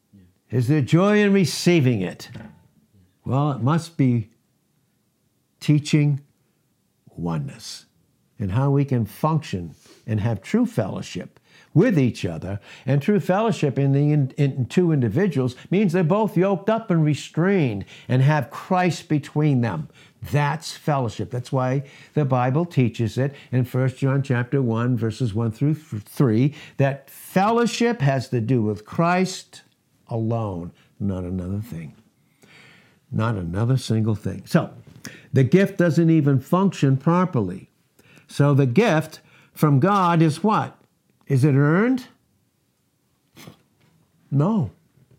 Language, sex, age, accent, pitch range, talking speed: English, male, 60-79, American, 125-170 Hz, 125 wpm